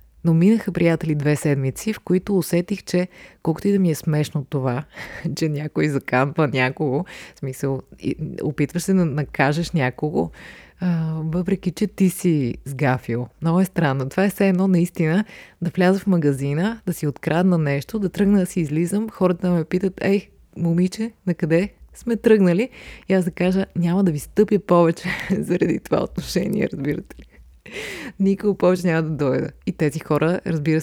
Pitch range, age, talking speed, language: 145-190 Hz, 20-39, 165 wpm, Bulgarian